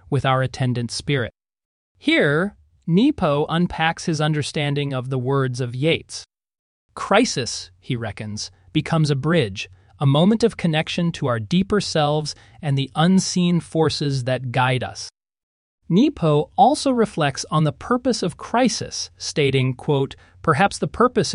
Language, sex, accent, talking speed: English, male, American, 135 wpm